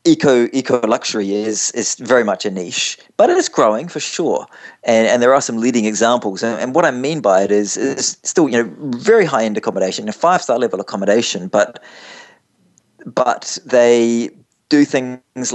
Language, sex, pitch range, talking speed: English, male, 100-115 Hz, 195 wpm